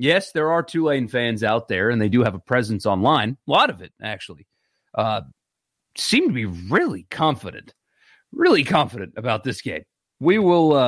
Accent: American